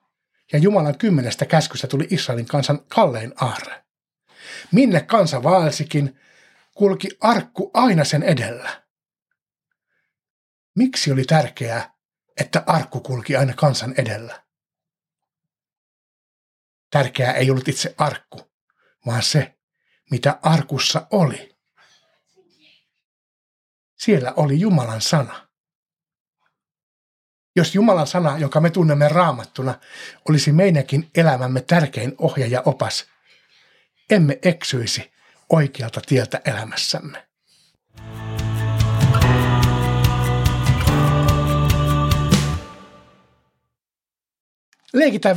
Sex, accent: male, native